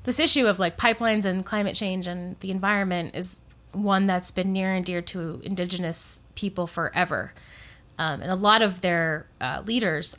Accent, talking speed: American, 175 wpm